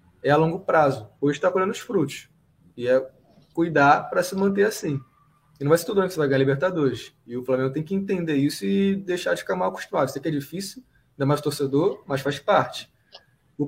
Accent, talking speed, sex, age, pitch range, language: Brazilian, 220 wpm, male, 20-39, 135-185 Hz, English